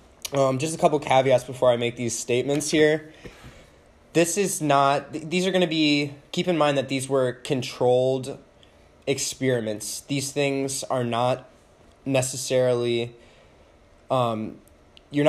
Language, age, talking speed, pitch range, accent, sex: English, 20-39, 135 wpm, 115-140 Hz, American, male